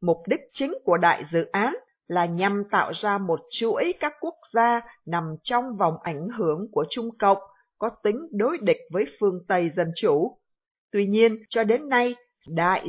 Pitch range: 180-235 Hz